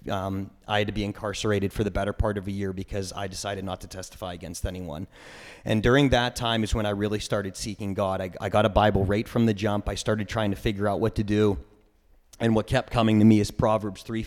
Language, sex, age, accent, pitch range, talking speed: English, male, 30-49, American, 100-115 Hz, 250 wpm